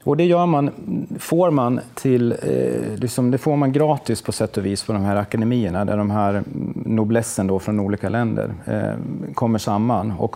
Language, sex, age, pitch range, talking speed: Swedish, male, 30-49, 100-125 Hz, 180 wpm